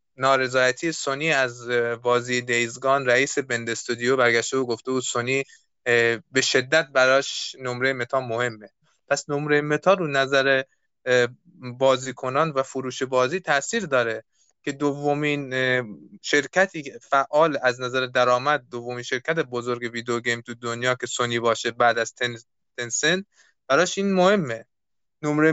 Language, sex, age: Persian, male, 20-39